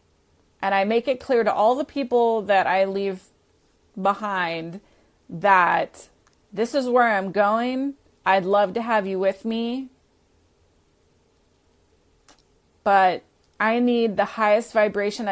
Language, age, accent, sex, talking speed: English, 30-49, American, female, 125 wpm